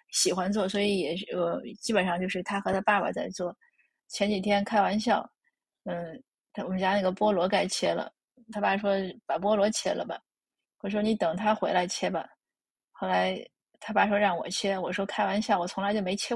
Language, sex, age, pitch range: Chinese, female, 20-39, 185-215 Hz